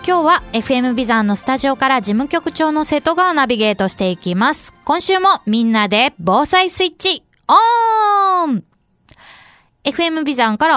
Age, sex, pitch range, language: 20-39, female, 230-345 Hz, Japanese